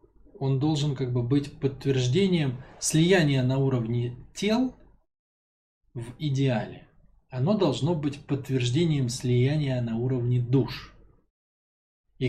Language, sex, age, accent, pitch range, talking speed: Russian, male, 20-39, native, 115-140 Hz, 105 wpm